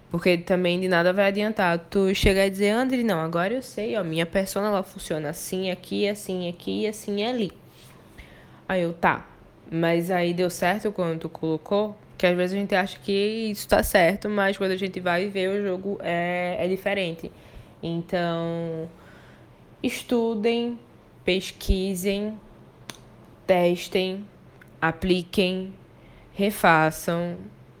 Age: 10-29